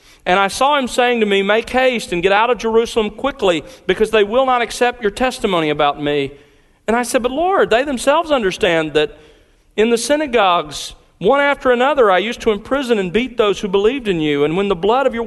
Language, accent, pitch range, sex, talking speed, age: English, American, 160-230 Hz, male, 220 wpm, 40-59